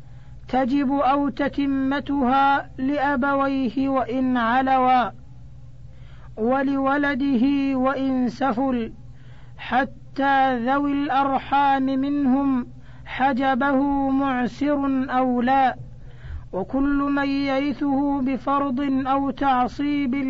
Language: Arabic